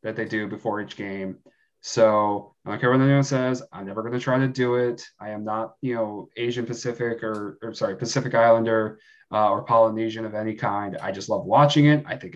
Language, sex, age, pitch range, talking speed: English, male, 20-39, 110-130 Hz, 225 wpm